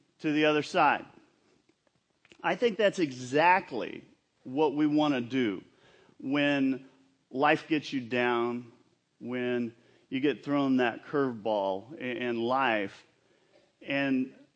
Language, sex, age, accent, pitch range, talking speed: English, male, 40-59, American, 125-155 Hz, 110 wpm